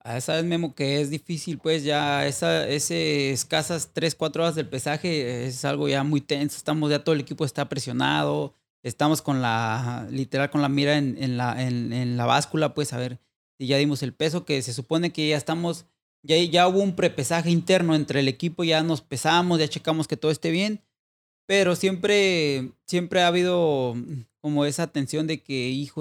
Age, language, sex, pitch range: 30-49, Spanish, male, 140-170 Hz